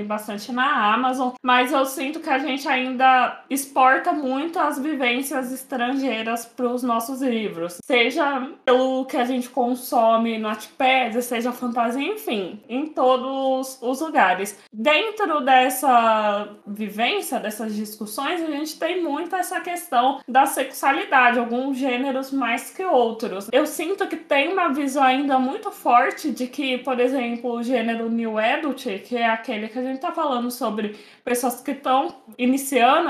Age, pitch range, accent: 20-39, 240-295 Hz, Brazilian